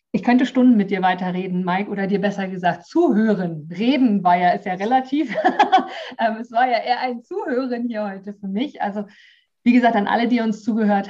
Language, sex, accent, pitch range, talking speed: German, female, German, 195-240 Hz, 195 wpm